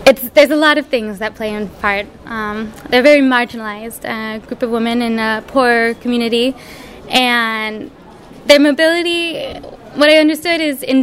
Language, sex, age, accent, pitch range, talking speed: Swedish, female, 20-39, American, 210-255 Hz, 170 wpm